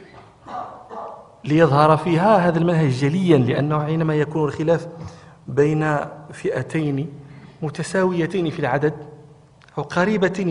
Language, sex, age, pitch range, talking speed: Arabic, male, 40-59, 135-180 Hz, 90 wpm